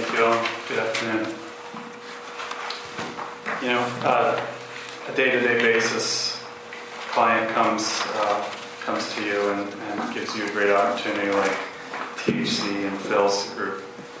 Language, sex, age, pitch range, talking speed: English, male, 30-49, 100-110 Hz, 120 wpm